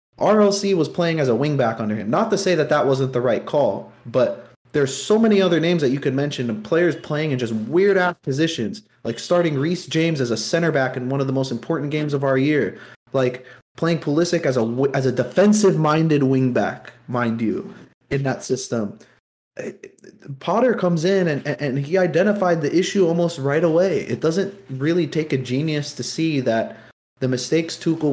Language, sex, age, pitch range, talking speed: English, male, 20-39, 125-170 Hz, 190 wpm